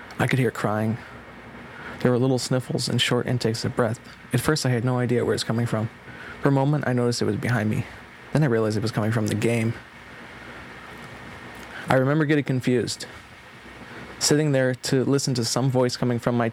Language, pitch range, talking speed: English, 120-135 Hz, 205 wpm